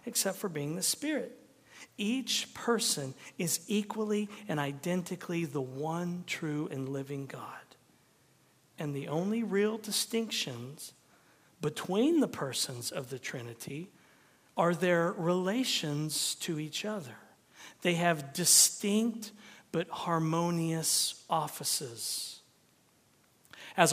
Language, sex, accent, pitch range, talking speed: English, male, American, 150-195 Hz, 105 wpm